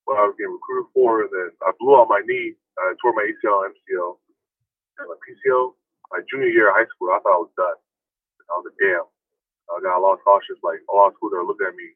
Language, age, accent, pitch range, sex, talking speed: English, 20-39, American, 355-420 Hz, male, 255 wpm